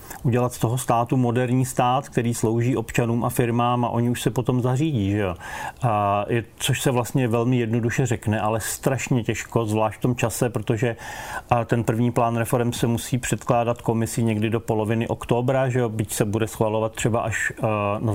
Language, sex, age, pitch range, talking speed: Slovak, male, 40-59, 110-125 Hz, 170 wpm